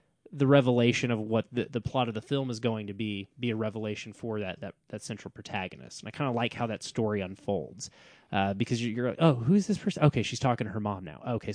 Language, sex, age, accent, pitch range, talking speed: English, male, 20-39, American, 105-135 Hz, 255 wpm